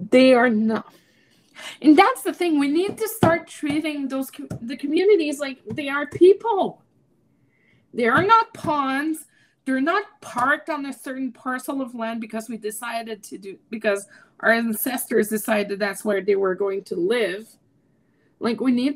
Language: English